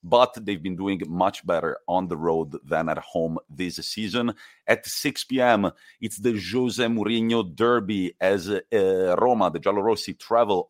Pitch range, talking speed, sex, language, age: 90-125 Hz, 155 wpm, male, English, 40-59